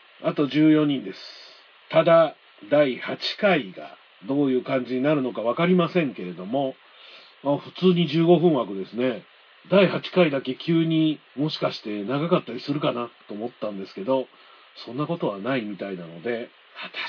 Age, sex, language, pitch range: 50-69, male, Japanese, 120-185 Hz